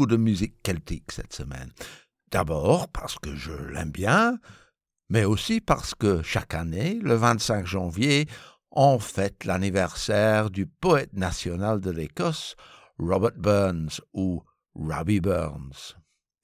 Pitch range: 85-130 Hz